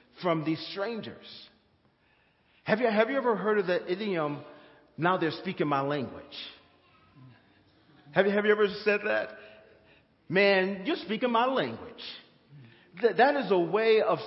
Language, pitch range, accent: English, 165-225 Hz, American